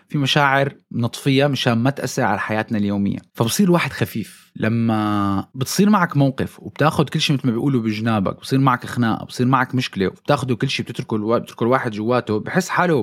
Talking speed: 175 wpm